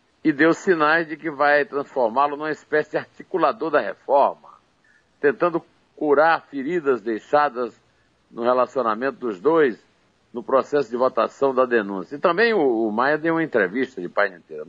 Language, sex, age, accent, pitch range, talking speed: Portuguese, male, 60-79, Brazilian, 125-180 Hz, 150 wpm